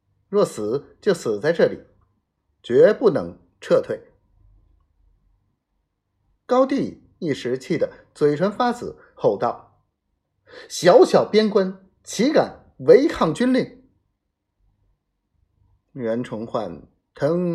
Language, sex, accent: Chinese, male, native